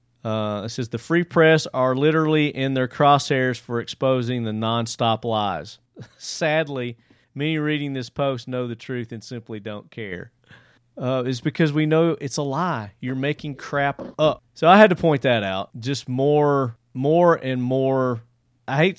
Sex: male